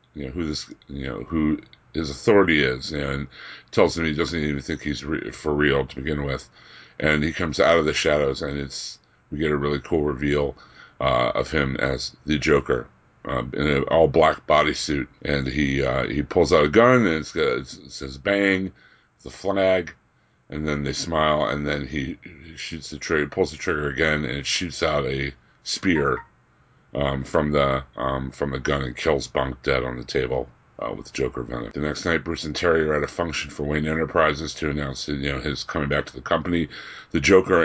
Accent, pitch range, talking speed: American, 70-80 Hz, 210 wpm